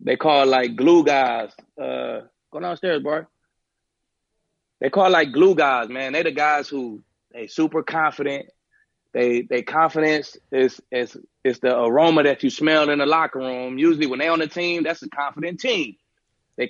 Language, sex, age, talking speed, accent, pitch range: English, male, 30-49, 180 wpm, American, 130-160 Hz